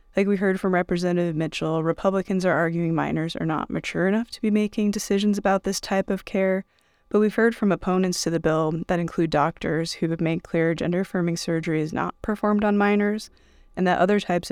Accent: American